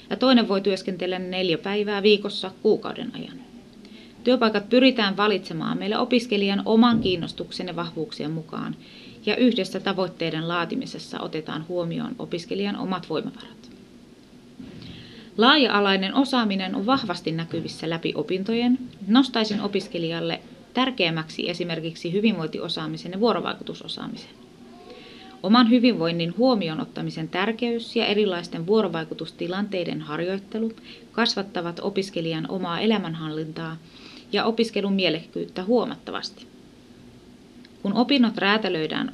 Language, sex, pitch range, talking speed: Finnish, female, 170-225 Hz, 95 wpm